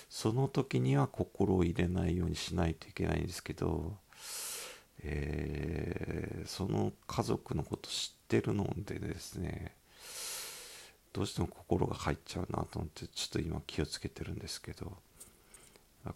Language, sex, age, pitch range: Japanese, male, 50-69, 75-95 Hz